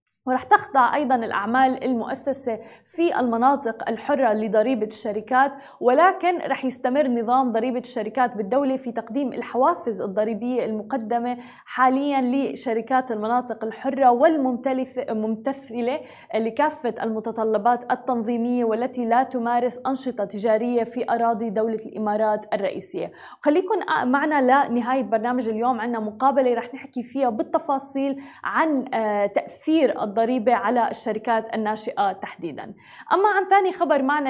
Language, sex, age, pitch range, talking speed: Arabic, female, 20-39, 230-285 Hz, 110 wpm